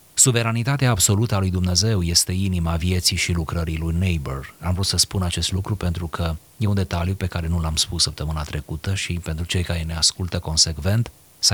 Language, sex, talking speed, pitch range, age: Romanian, male, 200 wpm, 80-100 Hz, 30-49